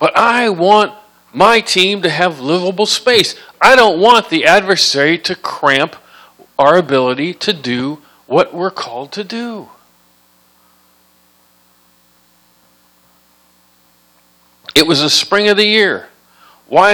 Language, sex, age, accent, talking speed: English, male, 50-69, American, 115 wpm